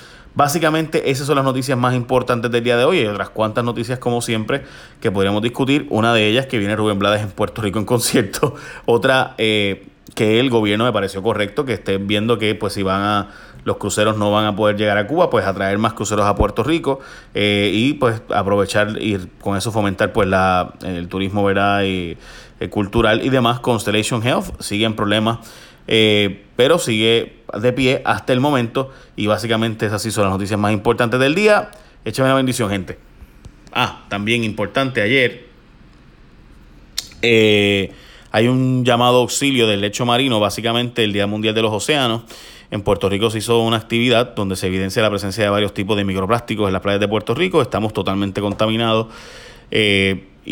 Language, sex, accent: Spanish, male, Venezuelan